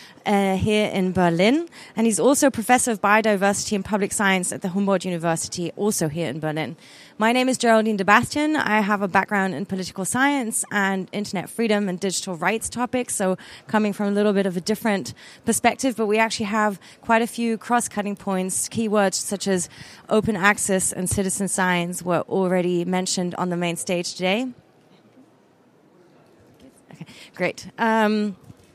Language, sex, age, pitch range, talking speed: English, female, 20-39, 200-230 Hz, 165 wpm